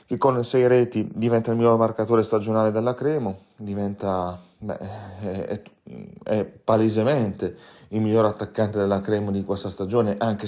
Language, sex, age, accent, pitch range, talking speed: Italian, male, 30-49, native, 95-110 Hz, 145 wpm